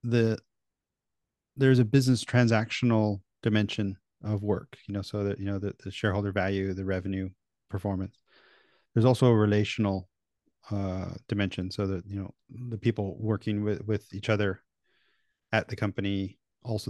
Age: 30-49